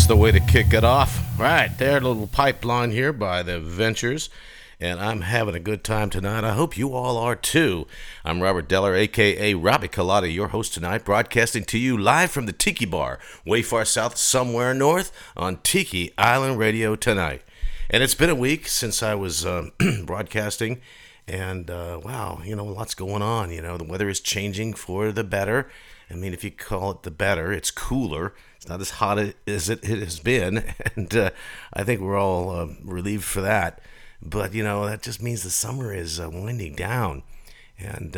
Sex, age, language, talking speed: male, 50-69, English, 195 wpm